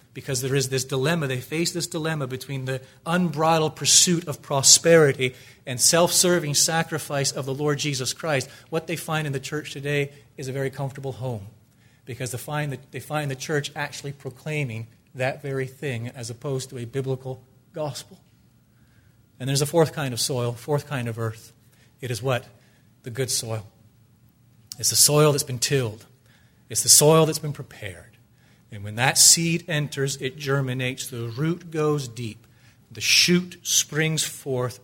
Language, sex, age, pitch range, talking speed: English, male, 40-59, 120-145 Hz, 165 wpm